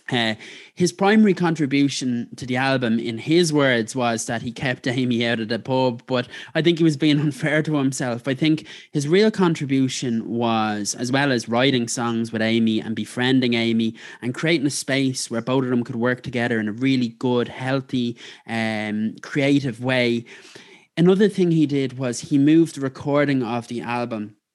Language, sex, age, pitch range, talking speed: English, male, 20-39, 115-140 Hz, 185 wpm